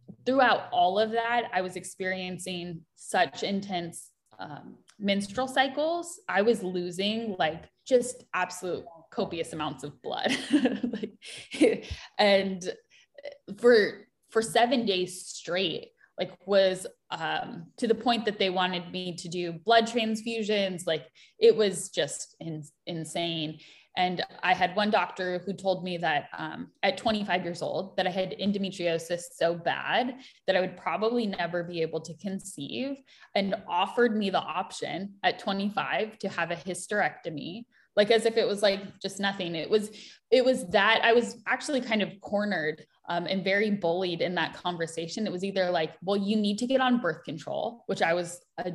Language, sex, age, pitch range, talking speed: English, female, 10-29, 180-230 Hz, 160 wpm